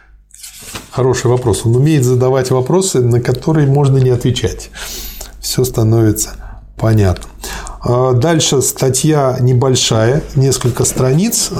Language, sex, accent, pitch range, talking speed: Russian, male, native, 110-135 Hz, 100 wpm